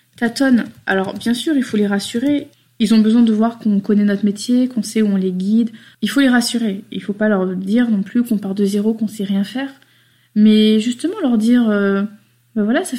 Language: French